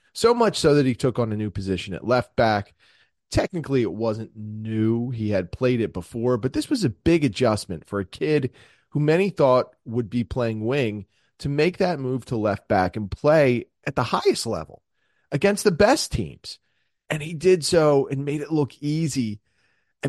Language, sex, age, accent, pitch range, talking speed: English, male, 30-49, American, 105-155 Hz, 195 wpm